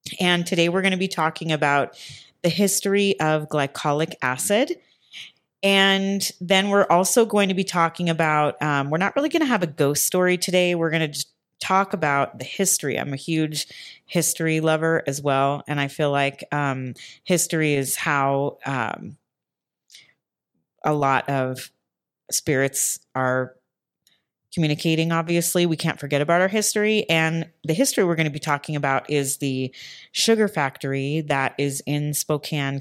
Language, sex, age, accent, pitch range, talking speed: English, female, 30-49, American, 140-175 Hz, 155 wpm